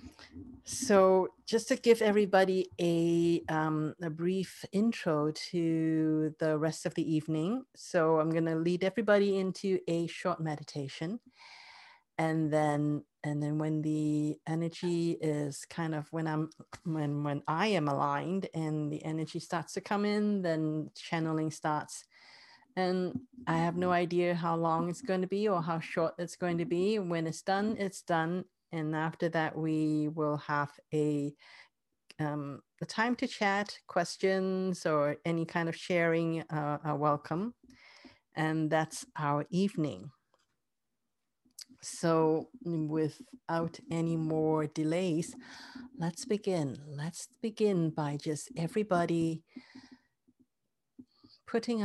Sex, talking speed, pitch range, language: female, 130 wpm, 155-190 Hz, English